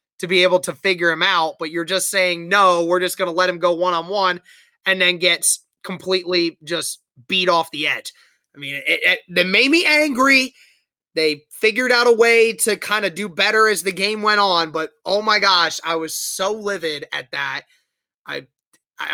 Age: 20-39